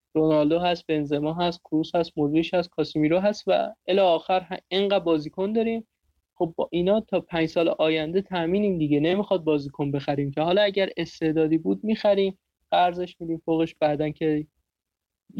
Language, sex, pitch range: Persian, male, 150-180 Hz